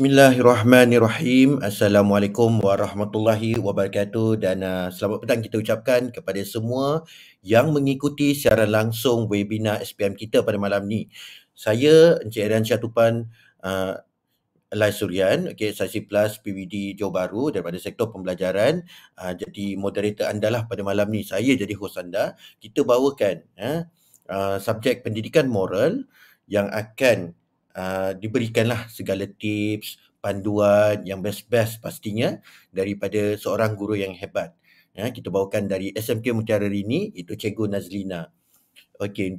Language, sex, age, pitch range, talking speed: Malay, male, 30-49, 100-115 Hz, 125 wpm